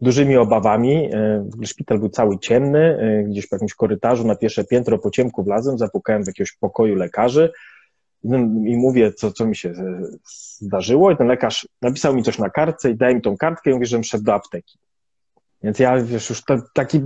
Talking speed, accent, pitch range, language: 195 wpm, native, 110-155 Hz, Polish